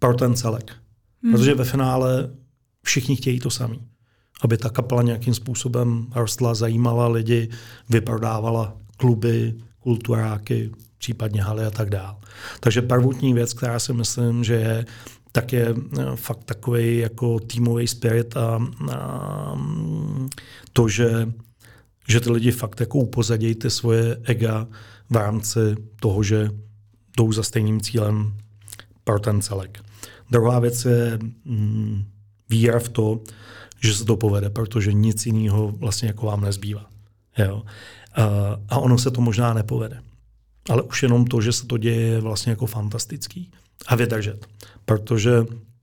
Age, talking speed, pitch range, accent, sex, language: 40-59, 135 wpm, 110-120 Hz, native, male, Czech